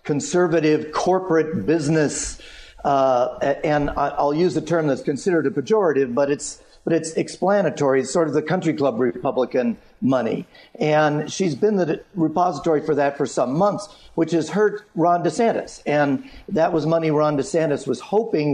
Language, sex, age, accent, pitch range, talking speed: English, male, 50-69, American, 135-180 Hz, 160 wpm